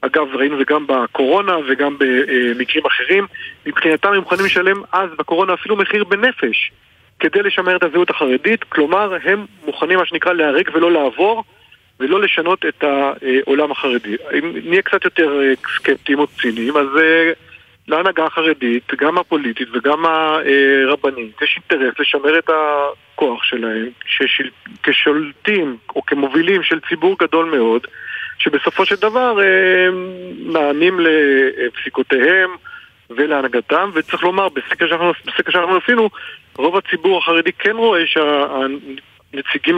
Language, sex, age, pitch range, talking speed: Hebrew, male, 40-59, 140-180 Hz, 120 wpm